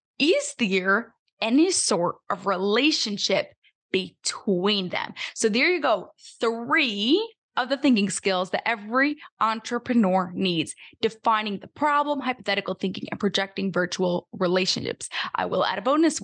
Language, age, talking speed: English, 10-29, 130 wpm